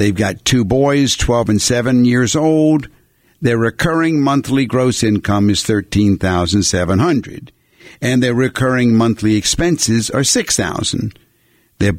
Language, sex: English, male